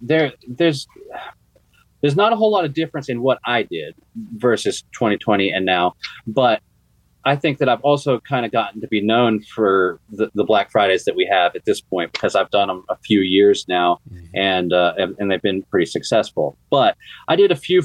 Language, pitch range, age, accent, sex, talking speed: English, 95-130 Hz, 30-49, American, male, 200 wpm